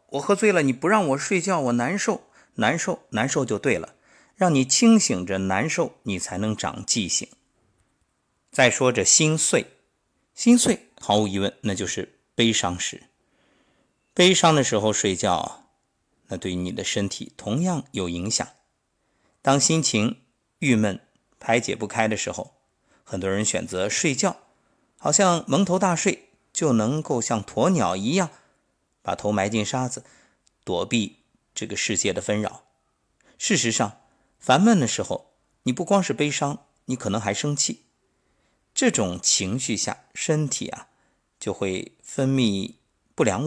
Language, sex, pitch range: Chinese, male, 105-160 Hz